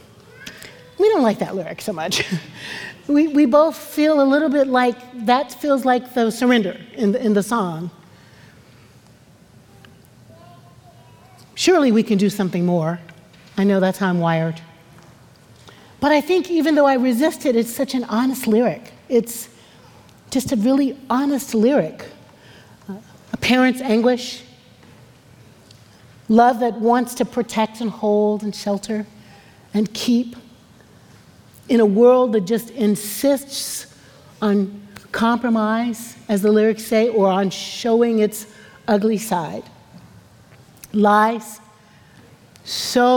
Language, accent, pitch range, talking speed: English, American, 185-240 Hz, 125 wpm